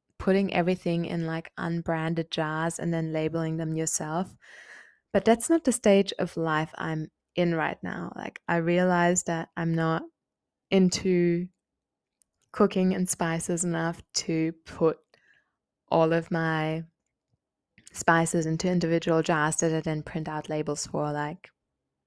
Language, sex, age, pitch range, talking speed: English, female, 20-39, 160-185 Hz, 135 wpm